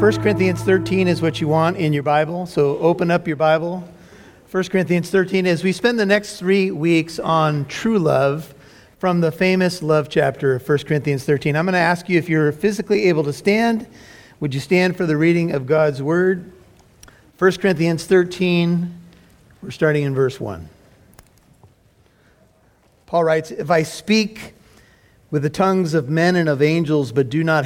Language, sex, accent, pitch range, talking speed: English, male, American, 135-175 Hz, 175 wpm